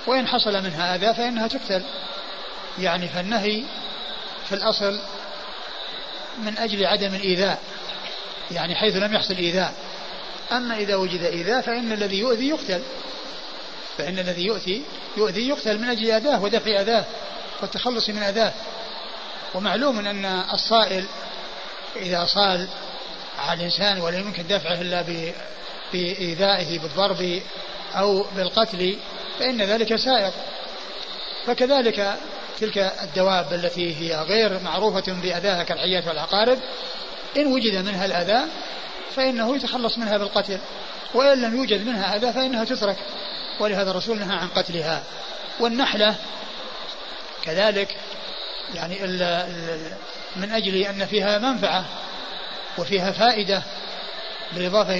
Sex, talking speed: male, 110 wpm